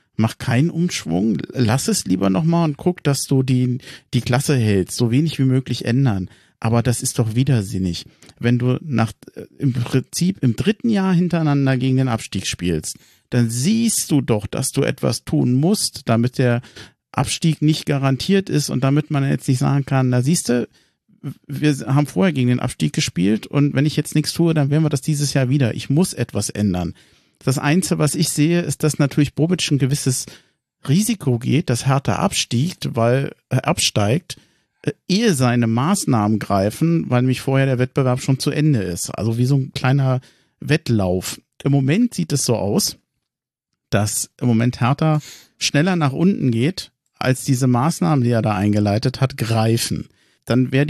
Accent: German